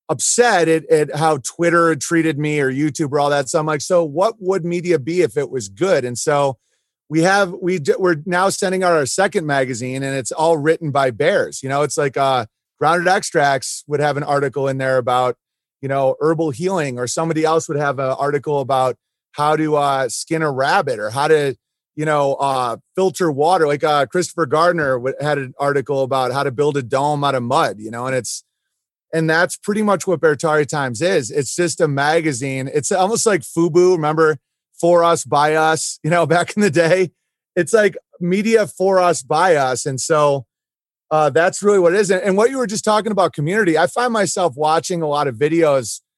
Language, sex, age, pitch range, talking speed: English, male, 30-49, 140-175 Hz, 210 wpm